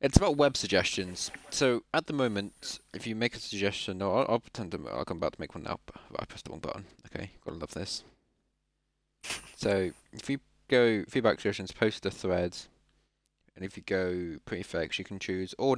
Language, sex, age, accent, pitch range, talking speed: English, male, 20-39, British, 95-115 Hz, 210 wpm